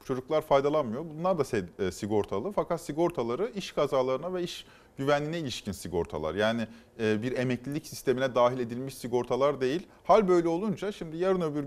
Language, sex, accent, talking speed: Turkish, male, native, 150 wpm